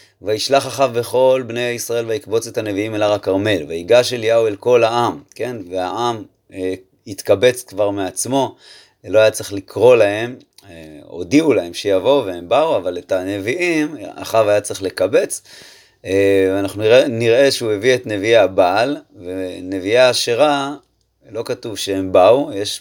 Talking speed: 145 wpm